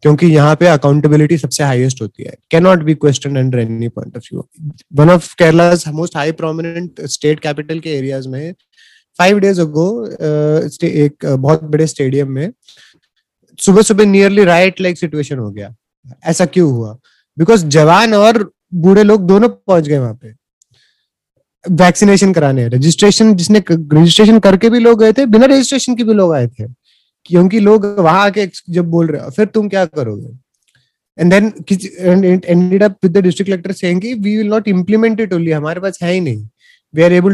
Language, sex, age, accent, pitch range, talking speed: Hindi, male, 20-39, native, 150-195 Hz, 125 wpm